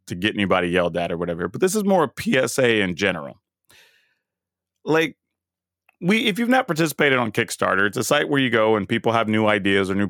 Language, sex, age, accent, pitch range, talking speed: English, male, 30-49, American, 100-140 Hz, 215 wpm